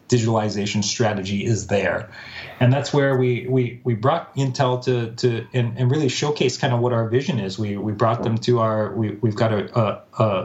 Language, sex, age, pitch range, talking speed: English, male, 30-49, 110-130 Hz, 205 wpm